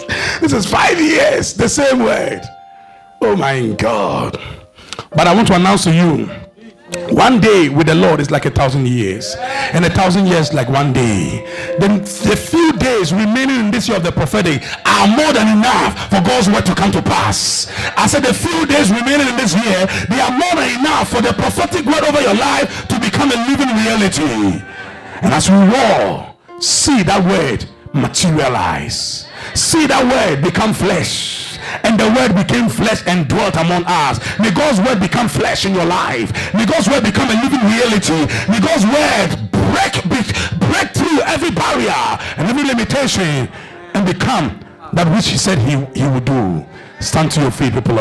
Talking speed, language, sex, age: 180 wpm, English, male, 50-69